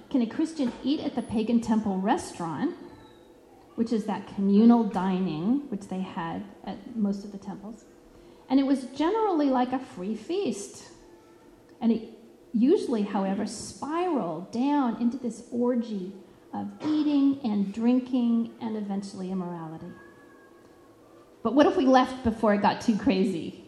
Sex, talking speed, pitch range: female, 140 wpm, 210-280 Hz